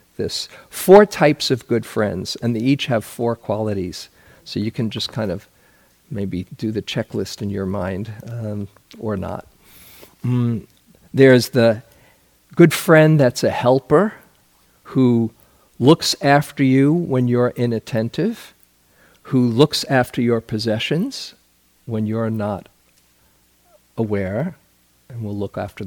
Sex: male